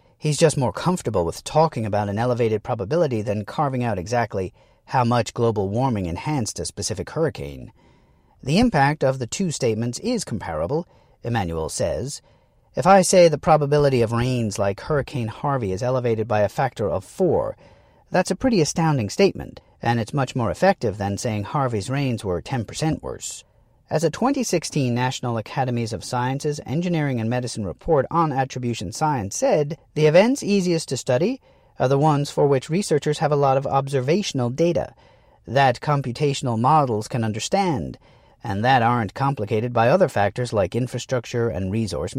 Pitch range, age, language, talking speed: 115-155 Hz, 40-59, English, 160 wpm